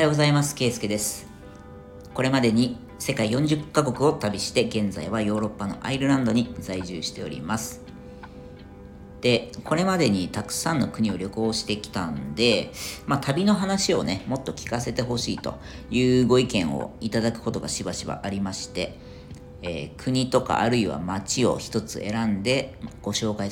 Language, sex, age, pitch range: Japanese, female, 40-59, 95-125 Hz